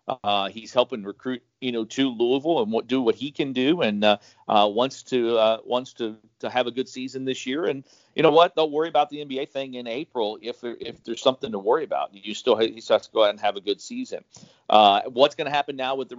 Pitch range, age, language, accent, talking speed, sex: 115-135 Hz, 40-59, English, American, 250 wpm, male